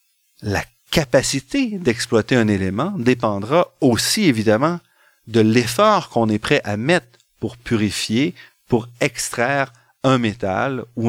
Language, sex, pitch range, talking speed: French, male, 105-140 Hz, 120 wpm